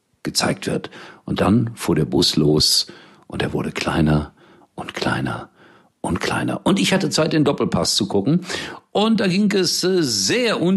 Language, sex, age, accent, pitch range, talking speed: German, male, 50-69, German, 95-150 Hz, 160 wpm